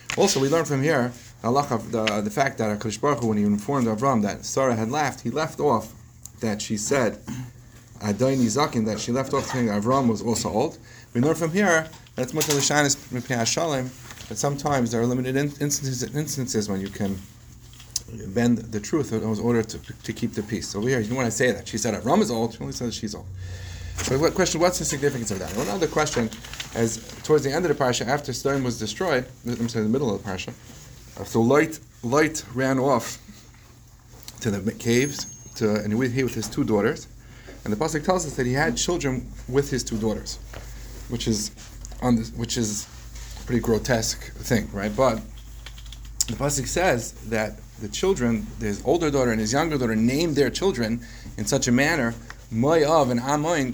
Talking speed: 190 wpm